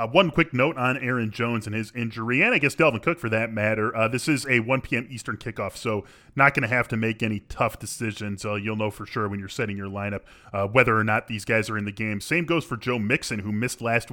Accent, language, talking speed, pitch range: American, English, 270 wpm, 110-140 Hz